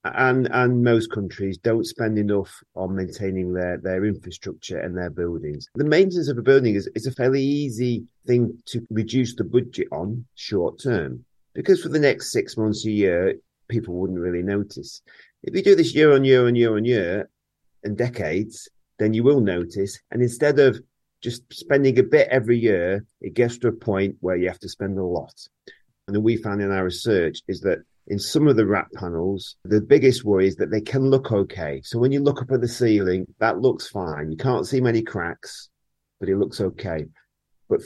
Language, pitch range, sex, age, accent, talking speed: English, 95-130 Hz, male, 40-59, British, 200 wpm